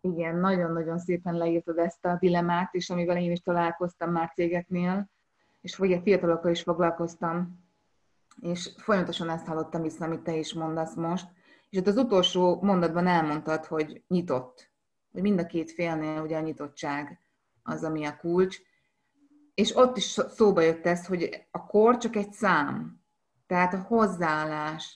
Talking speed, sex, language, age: 155 wpm, female, Hungarian, 20-39